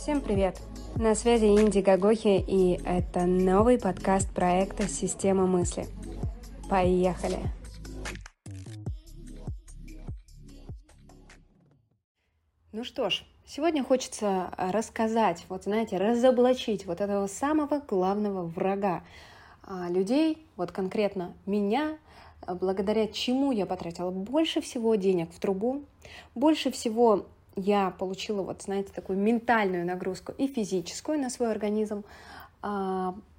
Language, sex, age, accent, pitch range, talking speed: Russian, female, 20-39, native, 185-235 Hz, 100 wpm